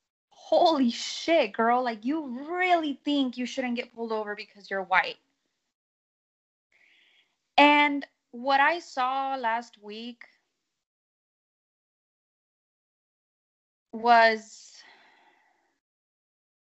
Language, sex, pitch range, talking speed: English, female, 215-290 Hz, 80 wpm